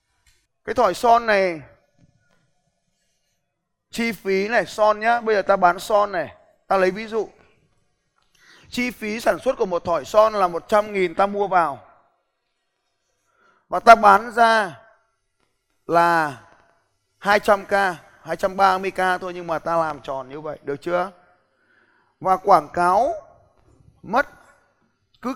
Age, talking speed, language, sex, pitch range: 20-39, 130 wpm, Vietnamese, male, 175-225 Hz